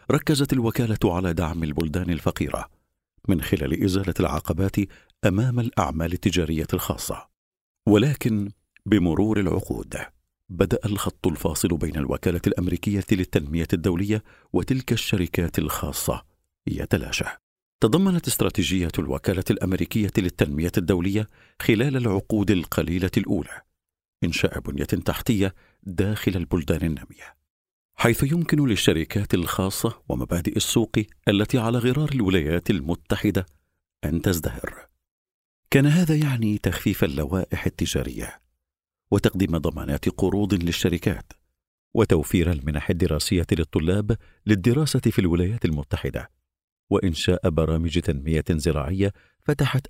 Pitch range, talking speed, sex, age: 85-110 Hz, 95 wpm, male, 50-69